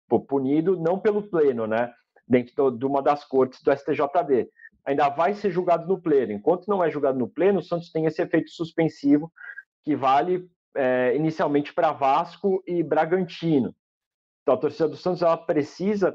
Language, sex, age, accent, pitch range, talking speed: Portuguese, male, 40-59, Brazilian, 125-160 Hz, 165 wpm